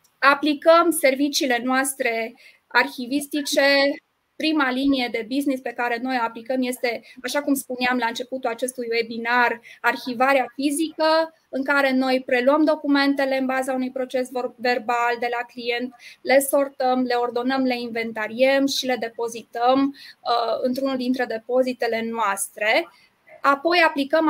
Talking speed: 130 wpm